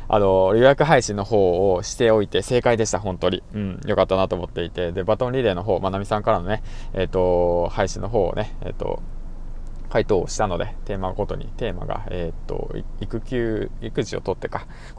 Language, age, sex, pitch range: Japanese, 20-39, male, 95-125 Hz